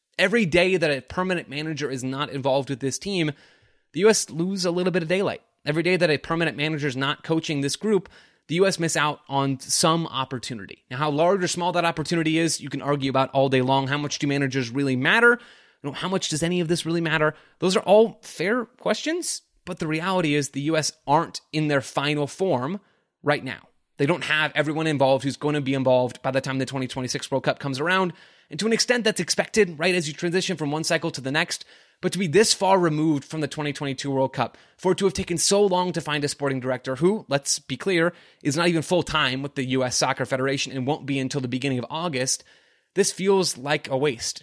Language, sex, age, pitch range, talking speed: English, male, 20-39, 135-175 Hz, 230 wpm